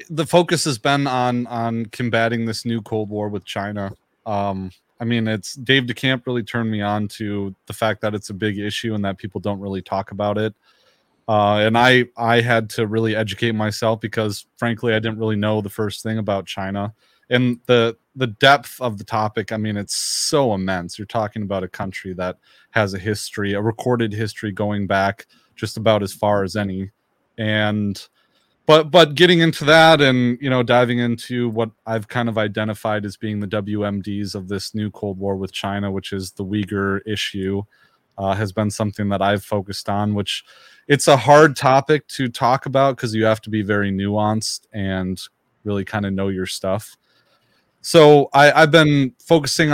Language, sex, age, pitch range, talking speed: English, male, 30-49, 100-125 Hz, 190 wpm